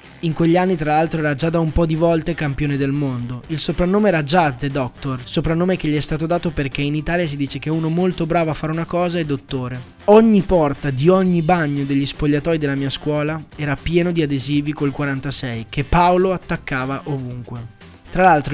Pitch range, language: 140-170 Hz, Italian